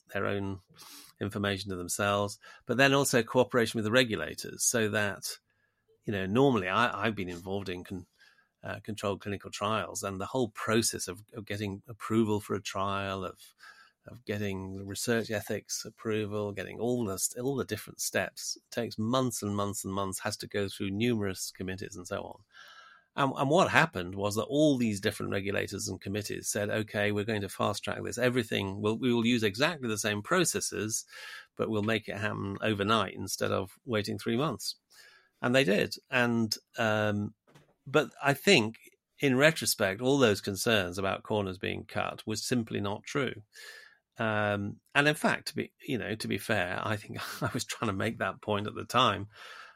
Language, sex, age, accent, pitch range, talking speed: English, male, 30-49, British, 100-120 Hz, 175 wpm